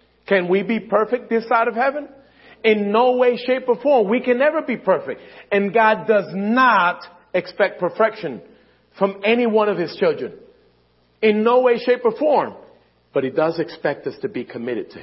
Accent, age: American, 40-59